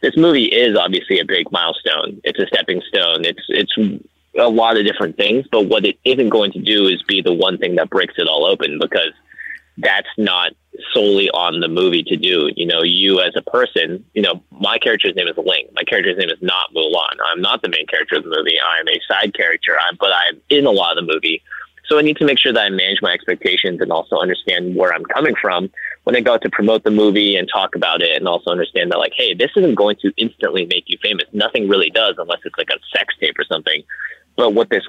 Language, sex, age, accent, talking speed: English, male, 20-39, American, 240 wpm